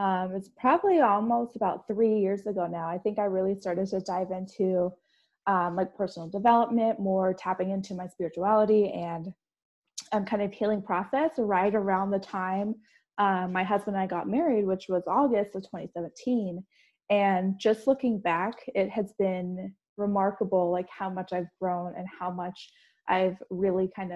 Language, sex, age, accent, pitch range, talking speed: English, female, 20-39, American, 185-215 Hz, 165 wpm